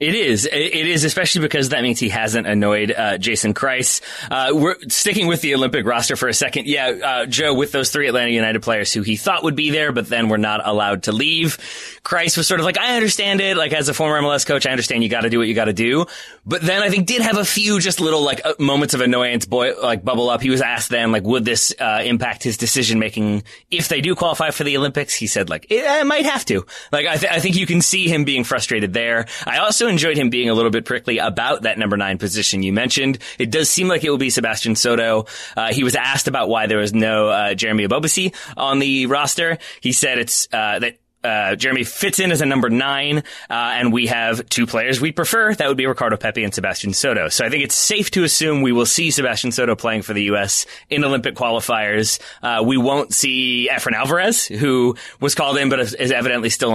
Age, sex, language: 20-39, male, English